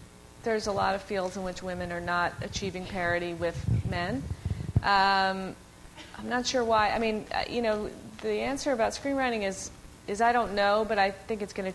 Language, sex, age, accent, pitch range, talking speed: English, female, 30-49, American, 175-195 Hz, 195 wpm